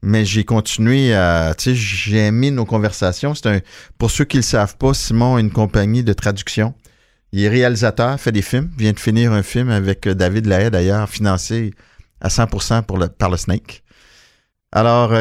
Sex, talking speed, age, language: male, 185 wpm, 50-69, English